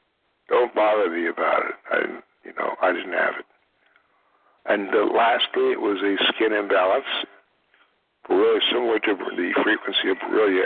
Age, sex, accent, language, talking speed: 60-79, male, American, English, 145 wpm